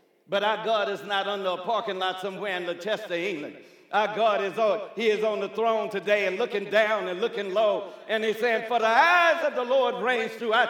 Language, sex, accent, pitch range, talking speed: English, male, American, 190-265 Hz, 225 wpm